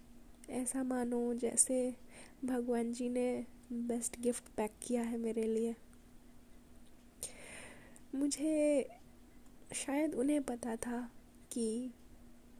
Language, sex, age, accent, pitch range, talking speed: Hindi, female, 20-39, native, 235-255 Hz, 90 wpm